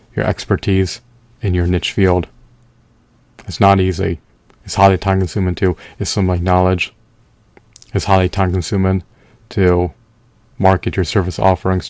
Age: 30-49